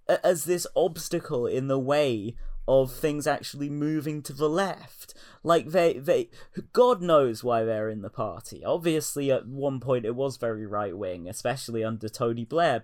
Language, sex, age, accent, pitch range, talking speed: English, male, 20-39, British, 120-175 Hz, 165 wpm